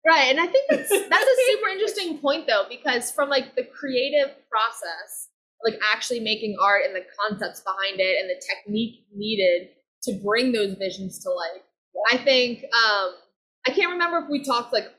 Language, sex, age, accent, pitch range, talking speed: English, female, 20-39, American, 200-280 Hz, 185 wpm